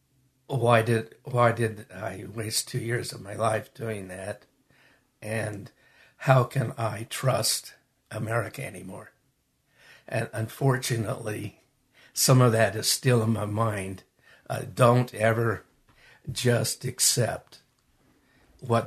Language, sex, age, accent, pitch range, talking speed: English, male, 60-79, American, 110-125 Hz, 115 wpm